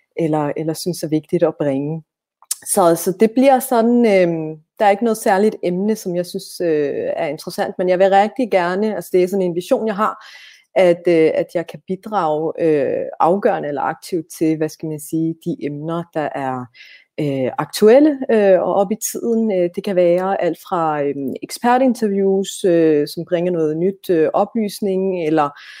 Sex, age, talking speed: female, 30-49, 185 wpm